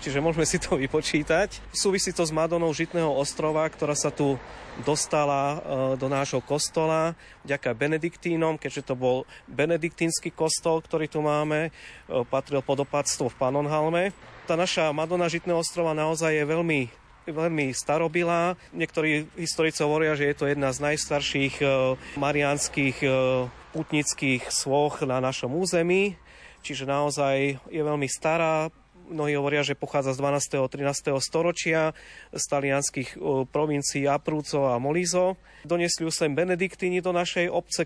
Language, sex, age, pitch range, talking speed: Slovak, male, 30-49, 140-165 Hz, 135 wpm